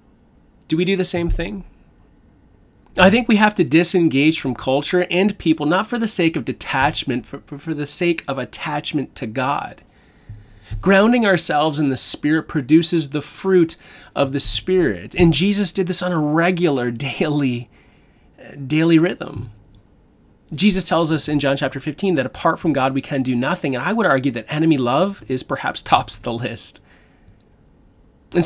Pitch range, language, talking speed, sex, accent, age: 135-175 Hz, English, 165 wpm, male, American, 30-49